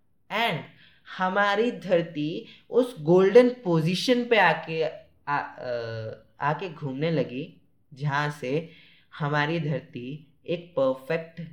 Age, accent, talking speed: 10-29, native, 90 wpm